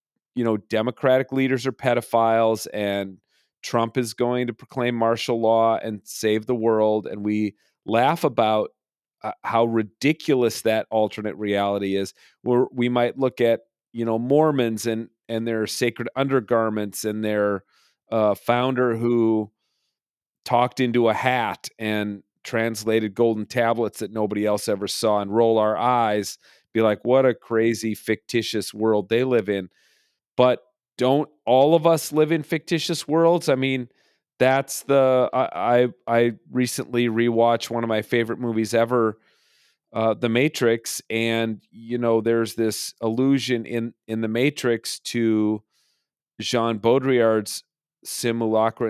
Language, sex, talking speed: English, male, 140 wpm